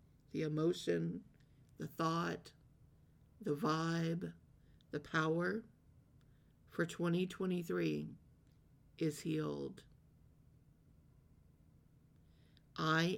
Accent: American